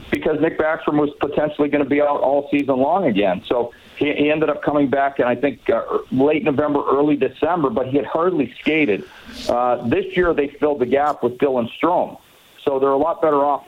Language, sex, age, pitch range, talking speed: English, male, 50-69, 125-145 Hz, 205 wpm